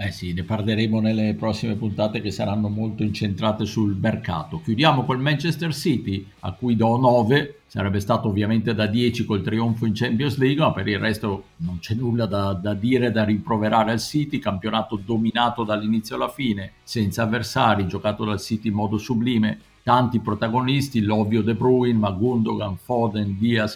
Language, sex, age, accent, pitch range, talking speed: Italian, male, 50-69, native, 105-115 Hz, 165 wpm